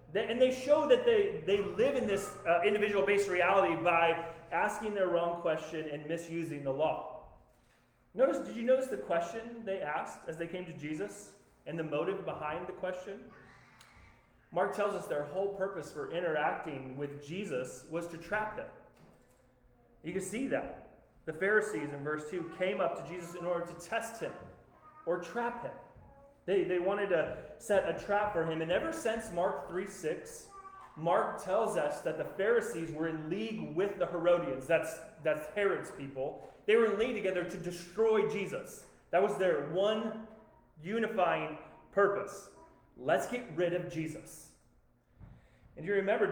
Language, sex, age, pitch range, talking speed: English, male, 30-49, 155-210 Hz, 165 wpm